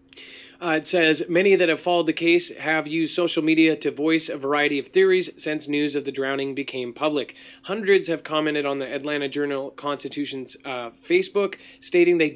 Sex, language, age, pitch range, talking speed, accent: male, English, 30-49, 145-185 Hz, 175 wpm, American